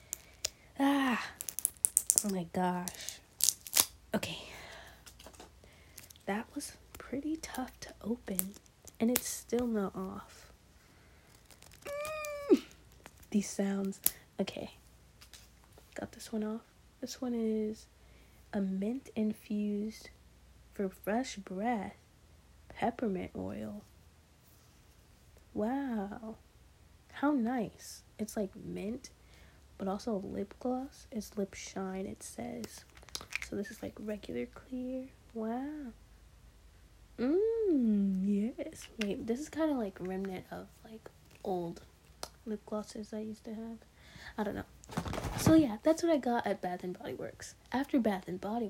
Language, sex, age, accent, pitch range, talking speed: English, female, 20-39, American, 190-245 Hz, 110 wpm